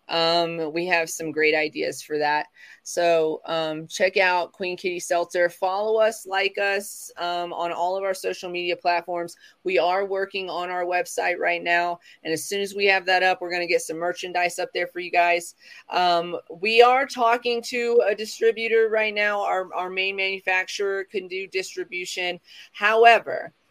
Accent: American